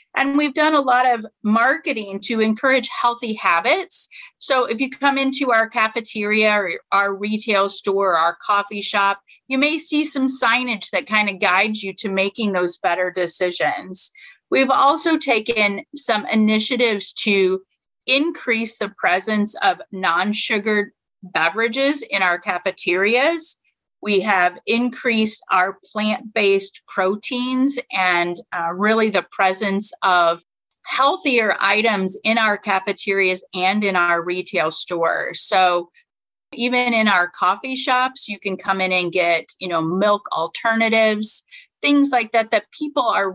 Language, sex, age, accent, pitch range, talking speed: English, female, 30-49, American, 190-245 Hz, 135 wpm